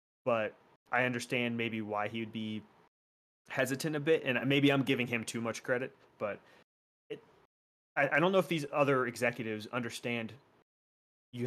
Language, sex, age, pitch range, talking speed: English, male, 30-49, 105-135 Hz, 160 wpm